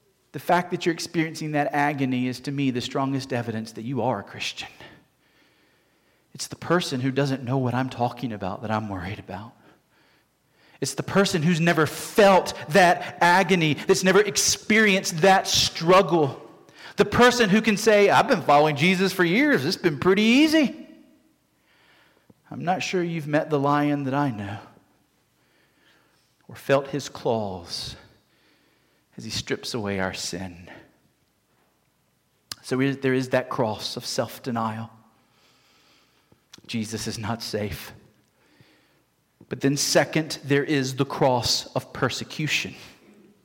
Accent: American